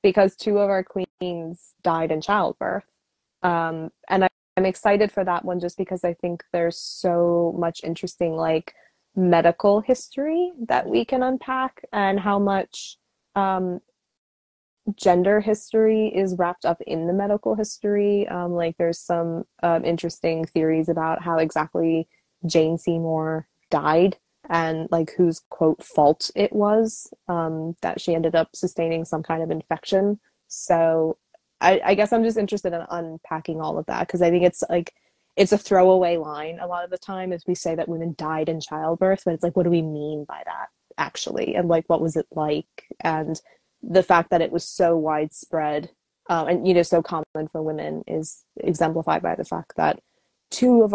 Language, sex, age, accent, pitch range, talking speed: English, female, 20-39, American, 165-195 Hz, 175 wpm